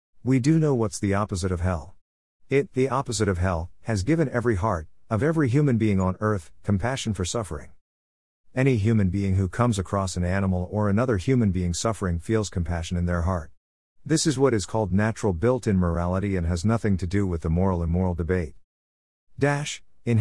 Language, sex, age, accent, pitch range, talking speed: English, male, 50-69, American, 85-115 Hz, 195 wpm